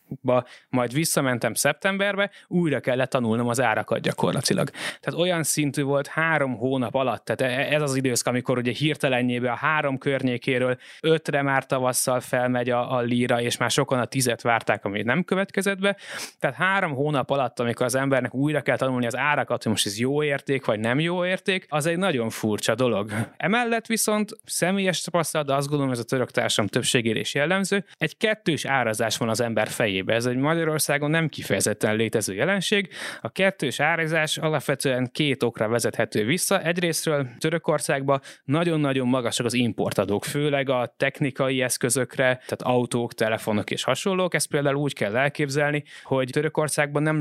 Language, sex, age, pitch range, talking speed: Hungarian, male, 30-49, 125-160 Hz, 165 wpm